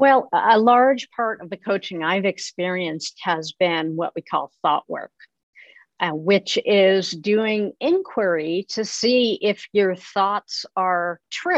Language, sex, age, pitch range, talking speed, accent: English, female, 50-69, 170-225 Hz, 145 wpm, American